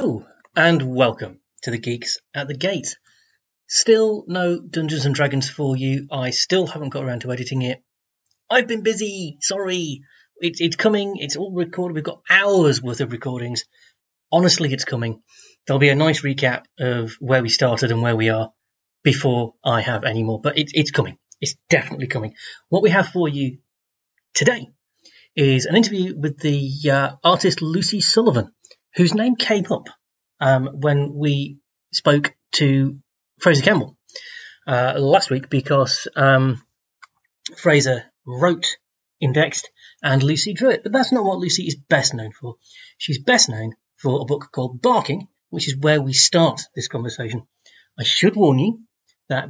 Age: 30-49